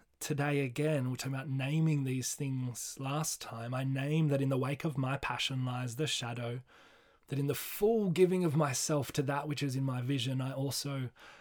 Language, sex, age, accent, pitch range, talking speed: English, male, 20-39, Australian, 115-140 Hz, 200 wpm